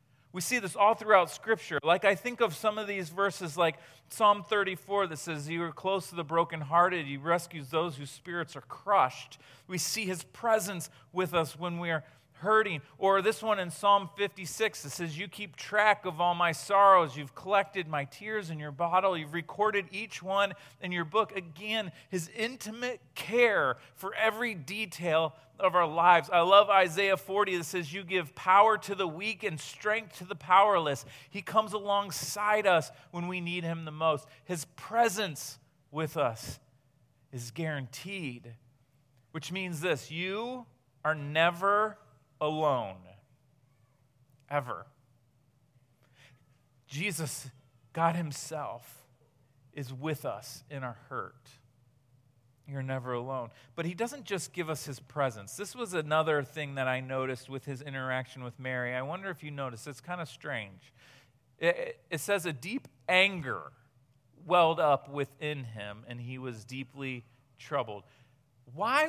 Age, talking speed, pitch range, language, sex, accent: 40-59, 155 wpm, 130-195 Hz, English, male, American